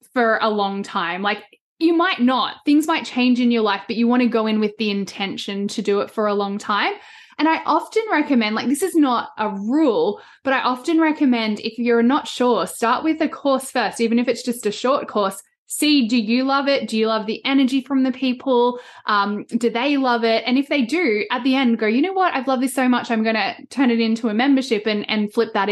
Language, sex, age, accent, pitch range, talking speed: English, female, 10-29, Australian, 215-275 Hz, 245 wpm